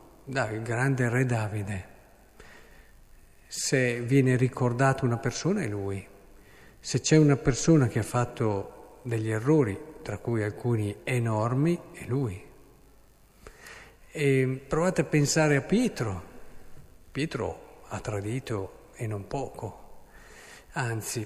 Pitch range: 110-135 Hz